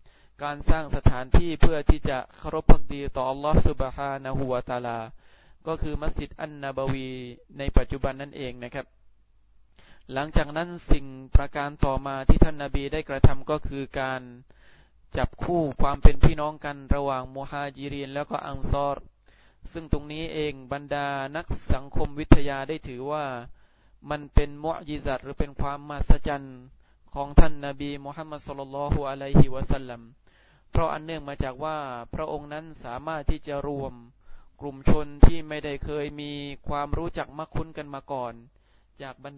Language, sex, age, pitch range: Thai, male, 20-39, 130-150 Hz